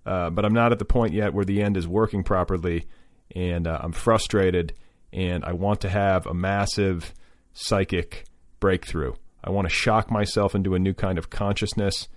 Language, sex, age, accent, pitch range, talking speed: English, male, 40-59, American, 85-105 Hz, 190 wpm